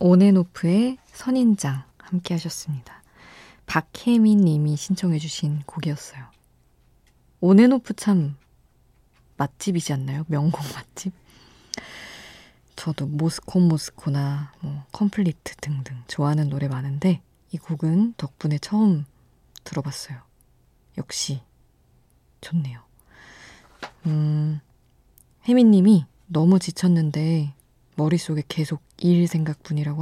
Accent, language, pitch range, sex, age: native, Korean, 145-175 Hz, female, 20-39